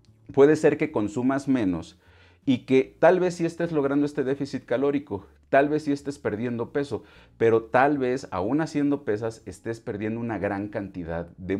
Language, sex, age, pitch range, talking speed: Spanish, male, 40-59, 100-135 Hz, 175 wpm